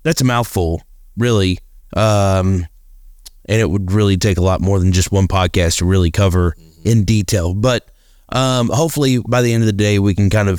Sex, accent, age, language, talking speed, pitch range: male, American, 30-49, English, 200 wpm, 95-125 Hz